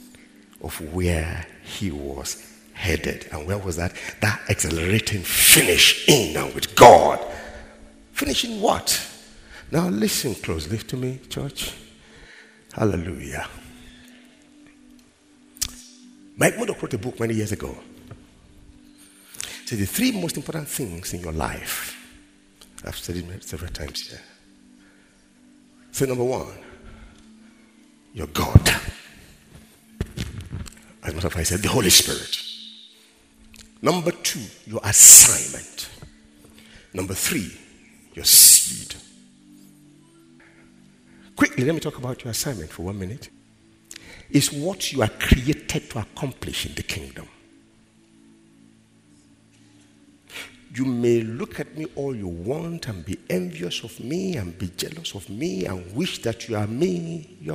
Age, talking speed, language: 60-79, 115 wpm, English